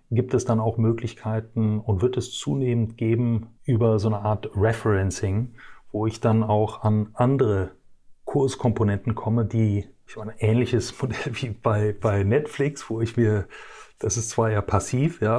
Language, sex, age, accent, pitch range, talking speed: German, male, 30-49, German, 105-125 Hz, 165 wpm